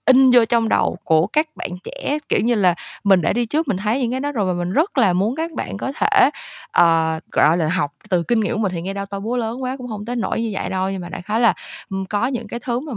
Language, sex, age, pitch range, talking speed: Vietnamese, female, 20-39, 180-230 Hz, 290 wpm